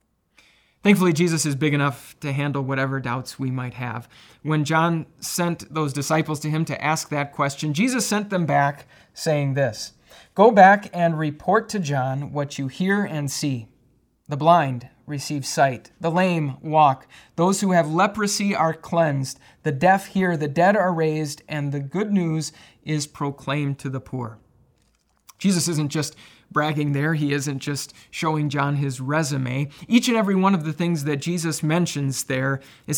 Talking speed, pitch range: 170 wpm, 135-170 Hz